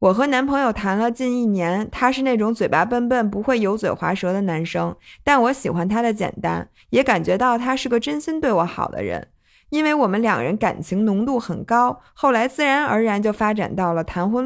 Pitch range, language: 190-250 Hz, Chinese